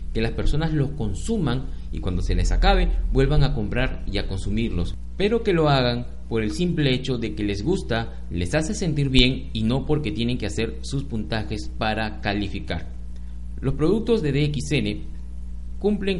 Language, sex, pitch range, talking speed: Spanish, male, 90-145 Hz, 175 wpm